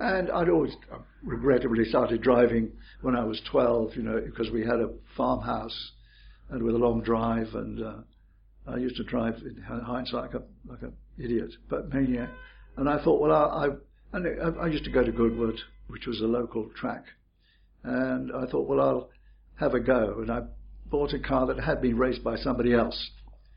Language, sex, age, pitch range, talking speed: English, male, 60-79, 110-125 Hz, 185 wpm